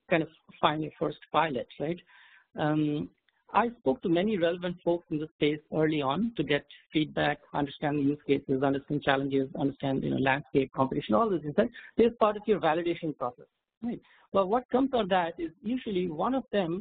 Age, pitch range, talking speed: 60-79, 150-185 Hz, 190 wpm